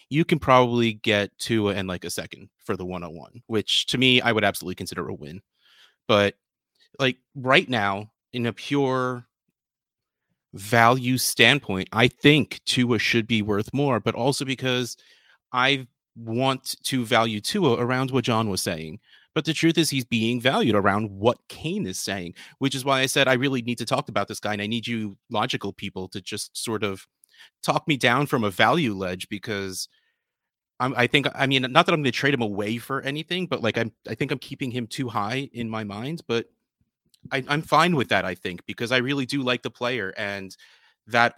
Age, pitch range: 30-49, 110-145 Hz